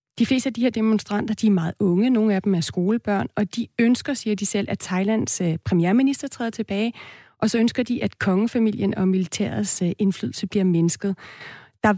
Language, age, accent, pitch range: Danish, 30-49, native, 180-220 Hz